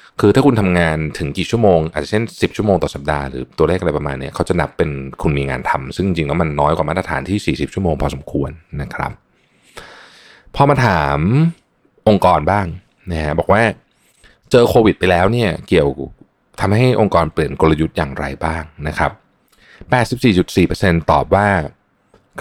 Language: Thai